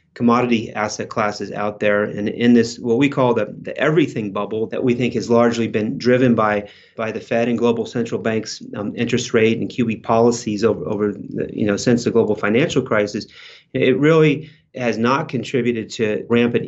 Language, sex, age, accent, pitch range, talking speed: English, male, 30-49, American, 115-130 Hz, 190 wpm